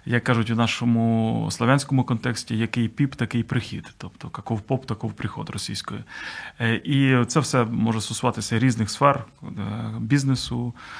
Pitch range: 115-135 Hz